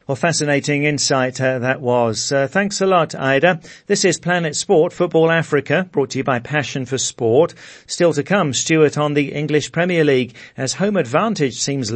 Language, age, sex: English, 40-59, male